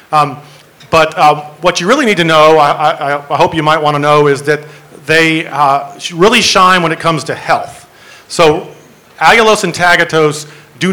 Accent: American